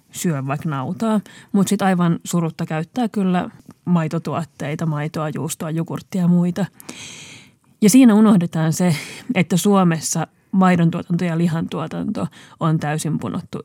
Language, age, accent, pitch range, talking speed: Finnish, 30-49, native, 165-205 Hz, 120 wpm